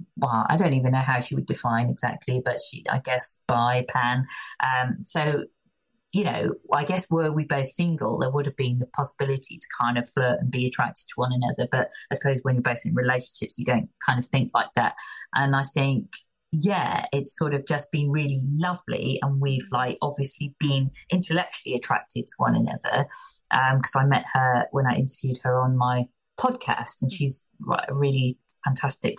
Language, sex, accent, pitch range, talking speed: English, female, British, 130-180 Hz, 195 wpm